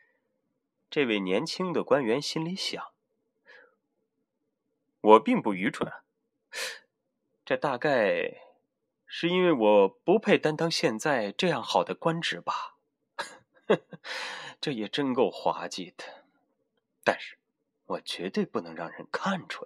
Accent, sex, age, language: native, male, 20-39, Chinese